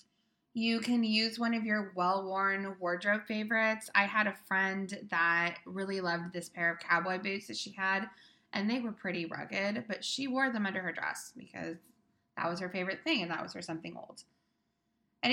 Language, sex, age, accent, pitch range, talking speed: English, female, 20-39, American, 180-225 Hz, 190 wpm